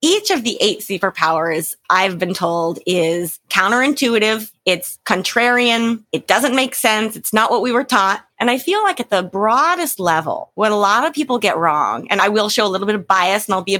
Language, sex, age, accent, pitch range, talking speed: English, female, 30-49, American, 185-245 Hz, 215 wpm